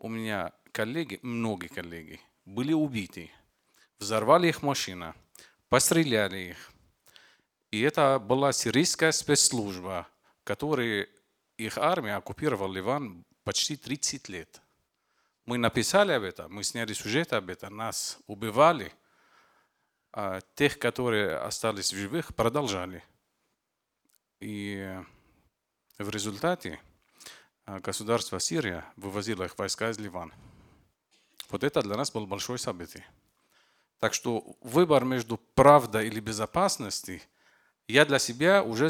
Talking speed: 110 wpm